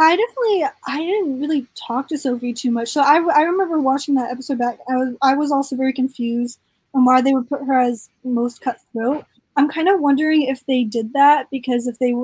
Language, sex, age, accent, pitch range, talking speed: English, female, 10-29, American, 230-290 Hz, 220 wpm